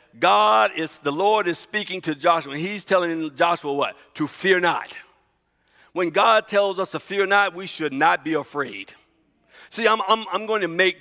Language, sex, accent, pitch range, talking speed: English, male, American, 150-205 Hz, 185 wpm